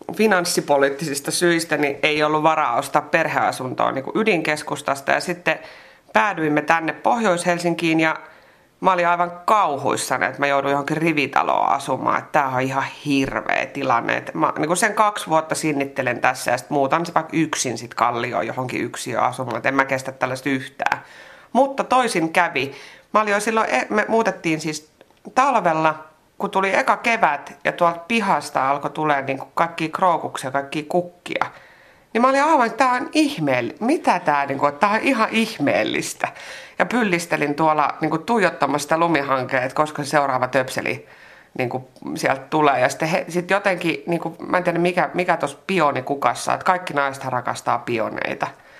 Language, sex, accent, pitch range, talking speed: Finnish, female, native, 140-180 Hz, 150 wpm